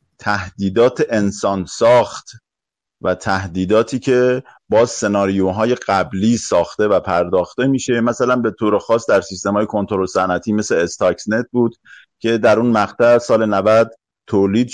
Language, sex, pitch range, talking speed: Persian, male, 100-125 Hz, 130 wpm